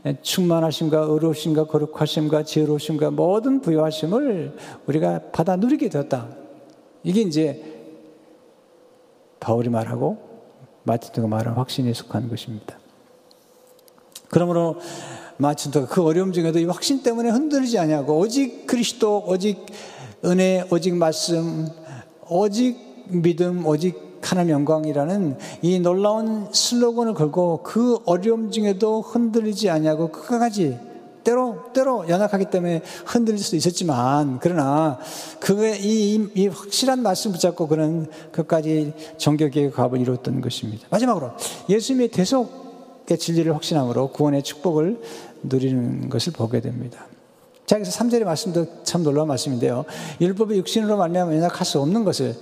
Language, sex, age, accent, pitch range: Korean, male, 50-69, native, 150-215 Hz